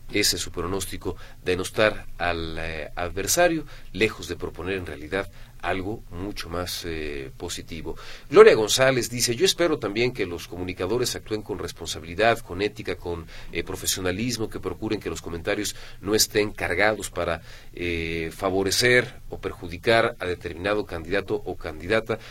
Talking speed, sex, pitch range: 145 wpm, male, 90-115 Hz